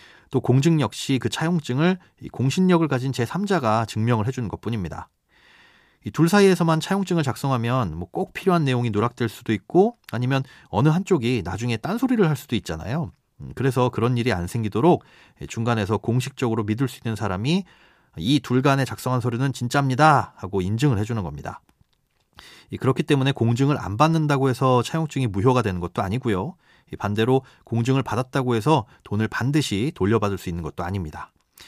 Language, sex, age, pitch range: Korean, male, 30-49, 105-155 Hz